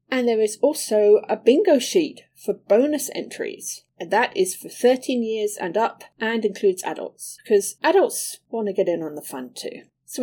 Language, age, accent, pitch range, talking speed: English, 40-59, British, 195-295 Hz, 190 wpm